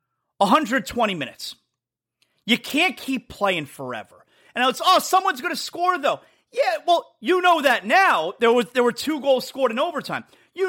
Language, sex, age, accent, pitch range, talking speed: English, male, 30-49, American, 180-290 Hz, 180 wpm